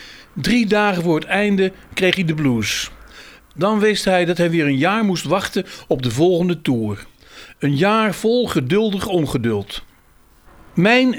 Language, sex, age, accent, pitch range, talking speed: Dutch, male, 50-69, Dutch, 150-210 Hz, 155 wpm